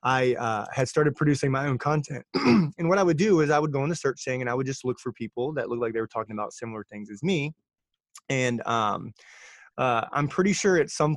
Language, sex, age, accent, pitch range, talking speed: English, male, 20-39, American, 125-155 Hz, 255 wpm